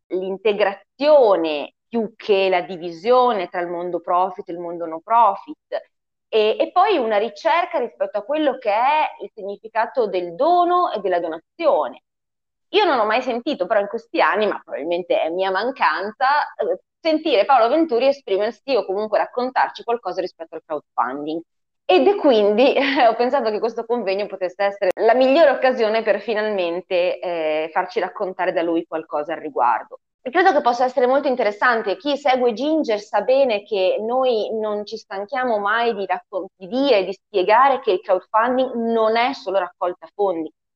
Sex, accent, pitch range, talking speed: female, native, 185-260 Hz, 160 wpm